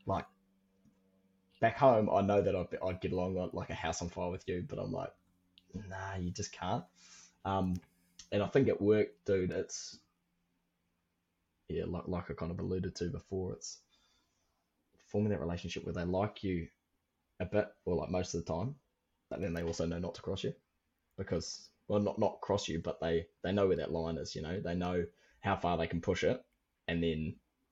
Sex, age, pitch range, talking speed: male, 20-39, 85-95 Hz, 205 wpm